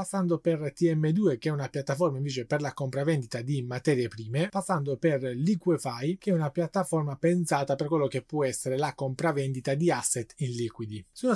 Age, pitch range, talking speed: 20-39, 130-170 Hz, 180 wpm